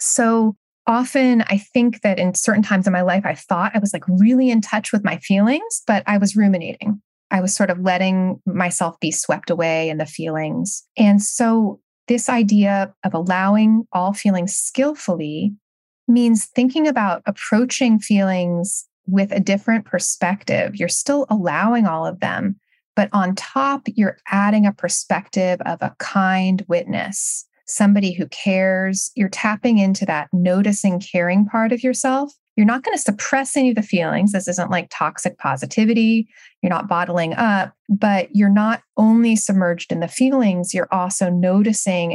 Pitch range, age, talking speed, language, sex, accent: 185-225 Hz, 30-49, 160 wpm, English, female, American